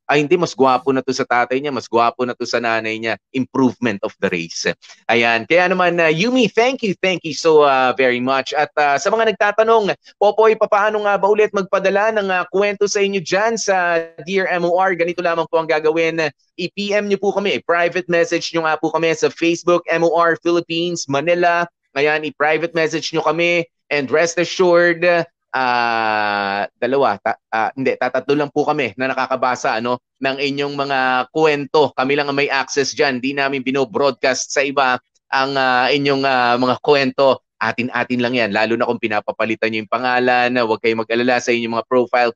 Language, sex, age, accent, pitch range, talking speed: Filipino, male, 20-39, native, 120-170 Hz, 185 wpm